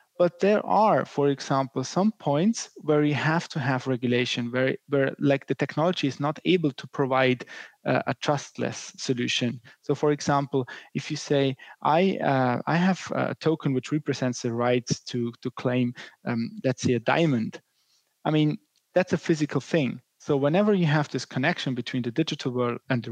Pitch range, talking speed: 130-160 Hz, 180 wpm